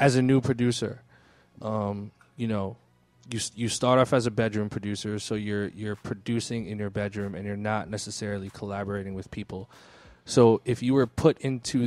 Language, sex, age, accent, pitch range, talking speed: English, male, 20-39, American, 100-115 Hz, 175 wpm